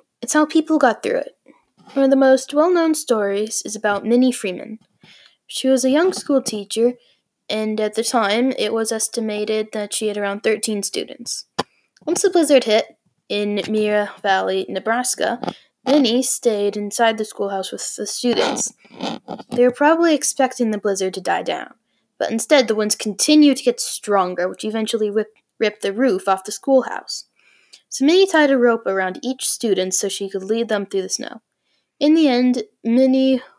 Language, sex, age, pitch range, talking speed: English, female, 10-29, 205-255 Hz, 170 wpm